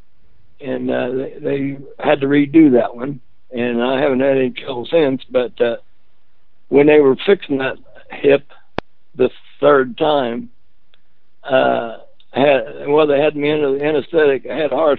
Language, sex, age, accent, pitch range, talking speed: English, male, 60-79, American, 125-150 Hz, 160 wpm